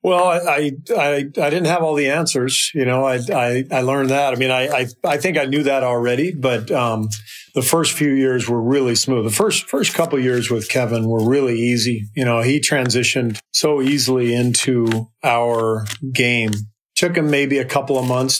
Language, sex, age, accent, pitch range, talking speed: English, male, 40-59, American, 120-140 Hz, 205 wpm